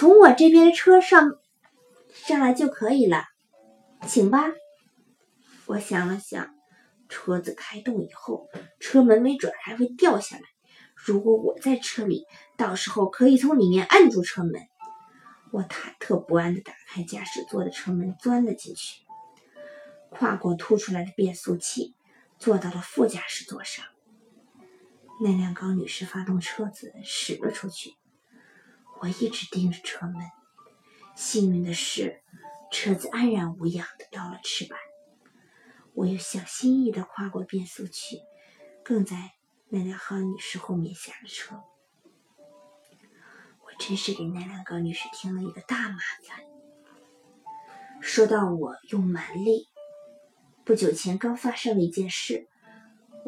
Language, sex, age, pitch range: Chinese, female, 20-39, 185-260 Hz